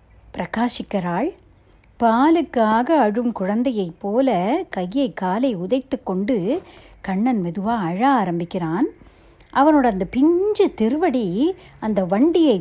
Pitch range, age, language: 215-330 Hz, 60-79, Tamil